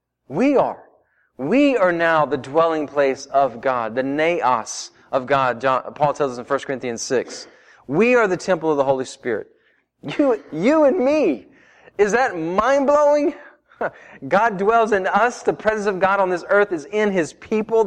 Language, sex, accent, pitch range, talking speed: English, male, American, 155-235 Hz, 170 wpm